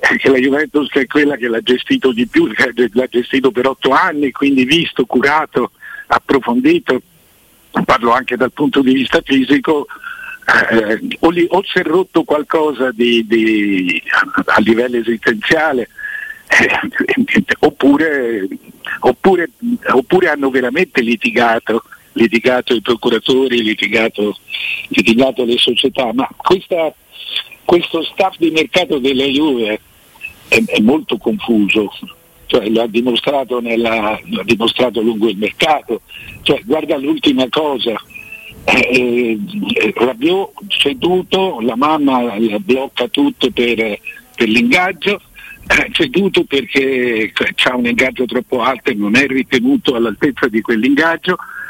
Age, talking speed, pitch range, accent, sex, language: 60-79, 120 wpm, 120-170 Hz, native, male, Italian